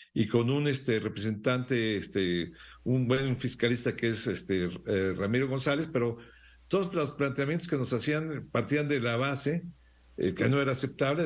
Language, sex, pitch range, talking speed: Spanish, male, 115-145 Hz, 160 wpm